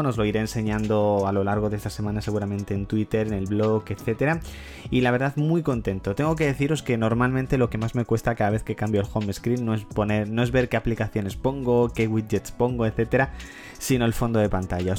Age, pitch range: 20-39, 105-120 Hz